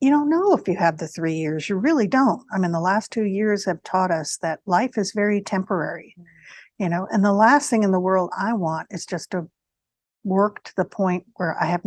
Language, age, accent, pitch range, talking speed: English, 60-79, American, 175-235 Hz, 240 wpm